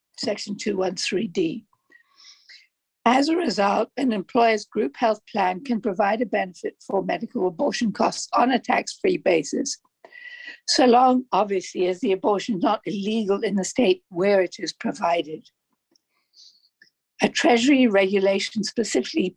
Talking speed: 135 wpm